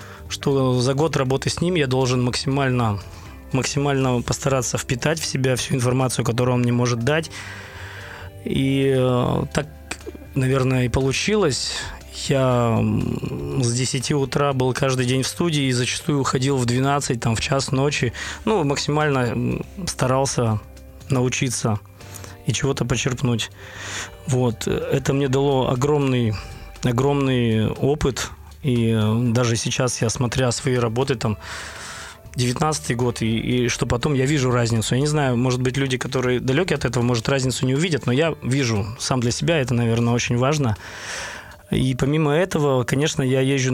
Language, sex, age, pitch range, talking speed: Russian, male, 20-39, 120-140 Hz, 145 wpm